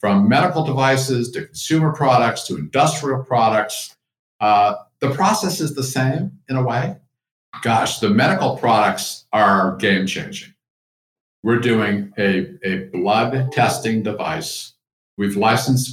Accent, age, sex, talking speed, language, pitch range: American, 50-69, male, 130 wpm, English, 100-130 Hz